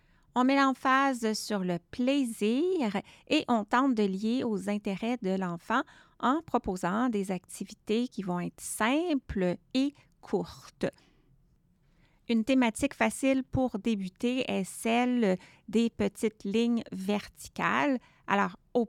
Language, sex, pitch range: French, female, 195-245 Hz